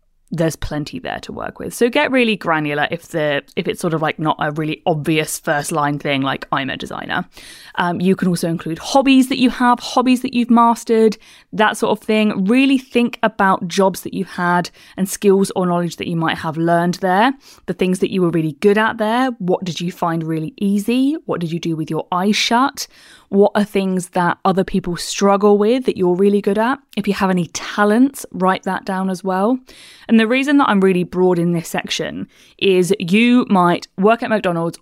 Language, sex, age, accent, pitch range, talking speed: English, female, 20-39, British, 175-220 Hz, 215 wpm